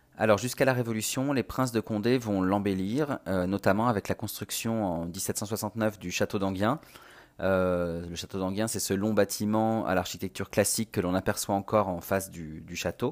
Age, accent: 30-49, French